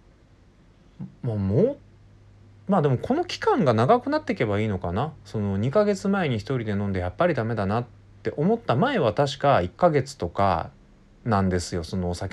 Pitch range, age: 95-125 Hz, 20-39